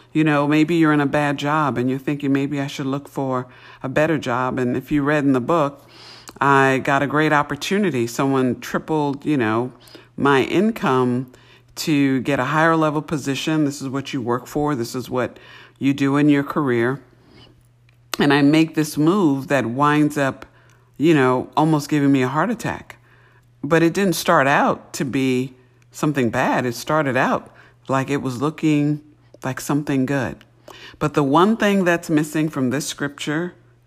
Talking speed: 180 wpm